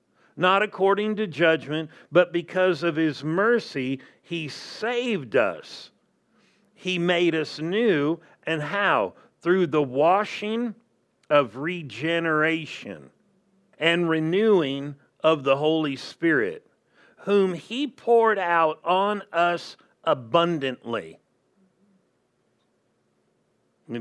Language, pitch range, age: English, 145-195 Hz, 50-69